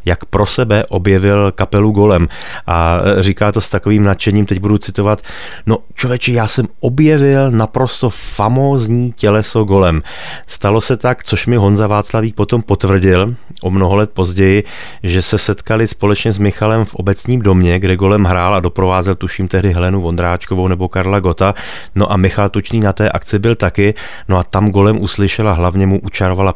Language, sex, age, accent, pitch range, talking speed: Czech, male, 30-49, native, 90-105 Hz, 170 wpm